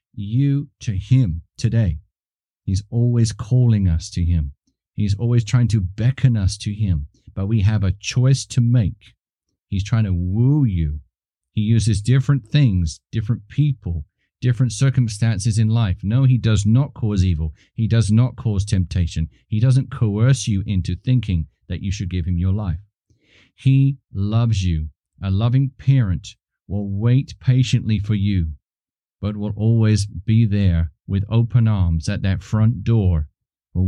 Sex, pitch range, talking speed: male, 95-115 Hz, 155 wpm